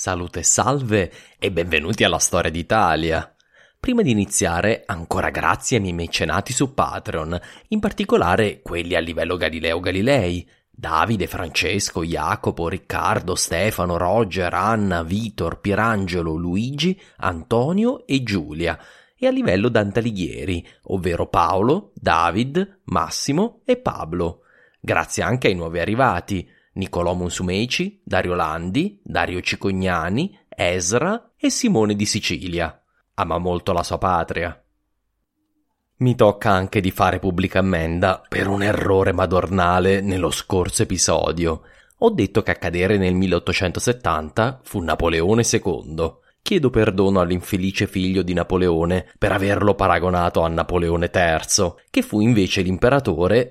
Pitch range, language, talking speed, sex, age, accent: 85-110 Hz, English, 120 wpm, male, 30-49, Italian